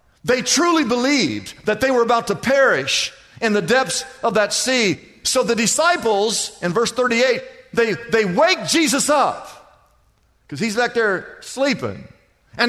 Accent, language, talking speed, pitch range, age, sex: American, English, 150 wpm, 190-275 Hz, 50-69, male